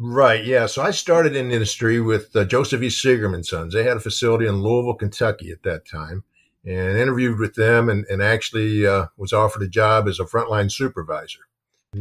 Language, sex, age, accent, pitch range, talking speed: English, male, 50-69, American, 100-115 Hz, 210 wpm